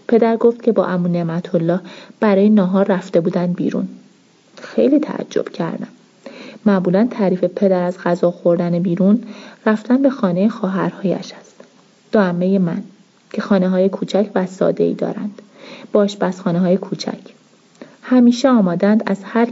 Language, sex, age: Persian, female, 30-49